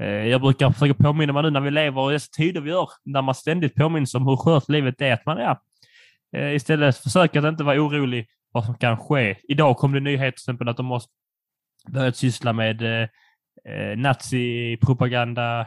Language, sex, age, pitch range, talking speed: Swedish, male, 20-39, 115-145 Hz, 185 wpm